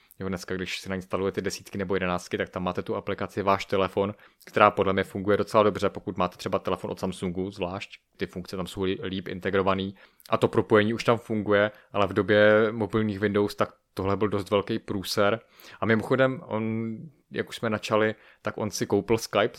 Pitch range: 95-110 Hz